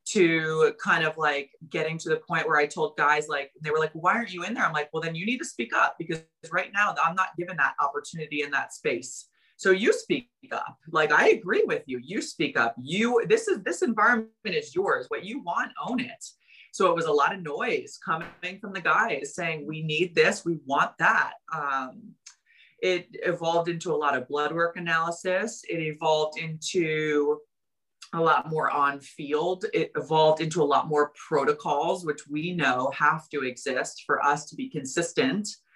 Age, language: 30-49, English